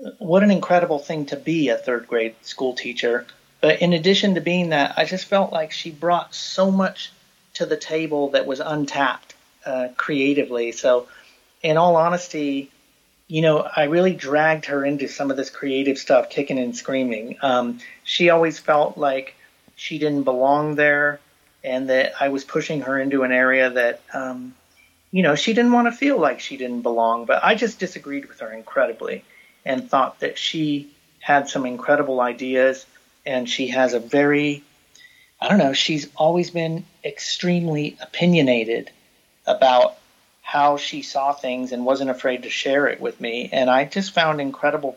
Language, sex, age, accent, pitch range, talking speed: English, male, 40-59, American, 130-165 Hz, 170 wpm